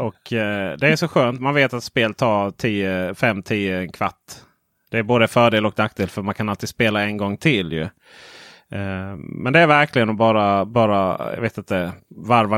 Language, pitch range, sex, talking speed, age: Swedish, 105-145 Hz, male, 190 wpm, 30-49